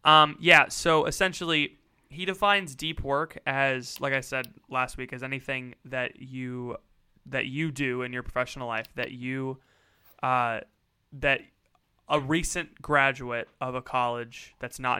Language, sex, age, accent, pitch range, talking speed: English, male, 20-39, American, 120-140 Hz, 150 wpm